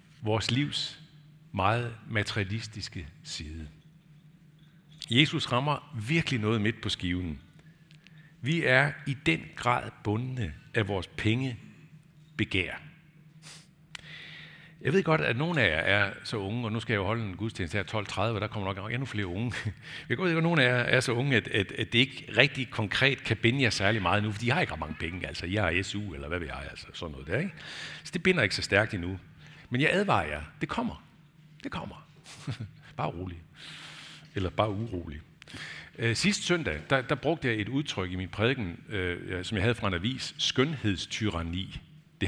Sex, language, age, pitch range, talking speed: male, Danish, 60-79, 100-155 Hz, 190 wpm